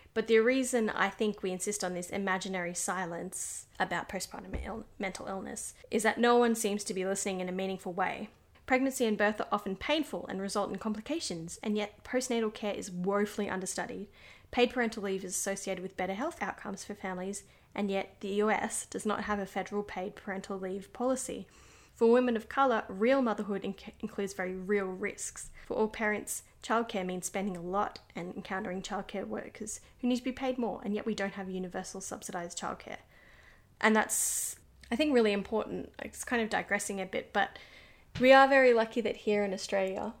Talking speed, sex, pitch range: 185 wpm, female, 190-225 Hz